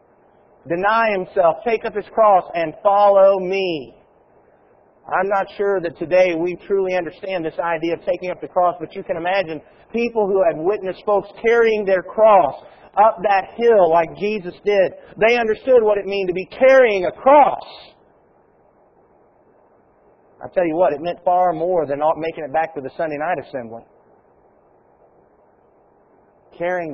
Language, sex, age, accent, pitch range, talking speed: English, male, 40-59, American, 180-235 Hz, 155 wpm